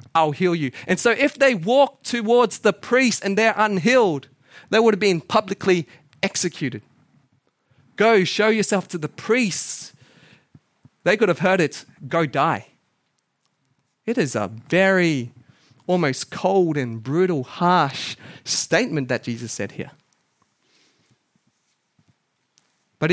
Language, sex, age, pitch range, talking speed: English, male, 30-49, 135-195 Hz, 125 wpm